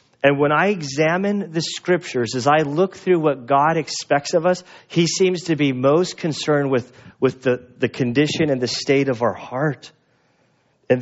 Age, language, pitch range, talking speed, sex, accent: 40-59, English, 130-180 Hz, 180 wpm, male, American